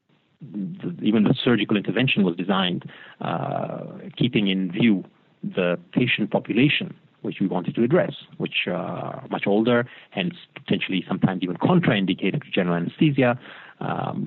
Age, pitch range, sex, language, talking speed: 40-59, 95-130 Hz, male, English, 140 wpm